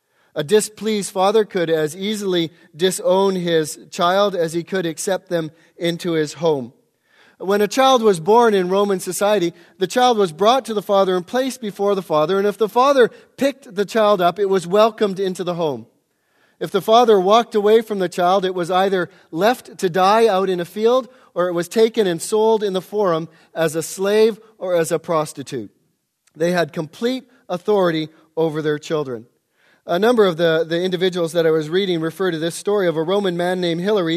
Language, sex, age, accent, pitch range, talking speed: English, male, 40-59, American, 165-205 Hz, 195 wpm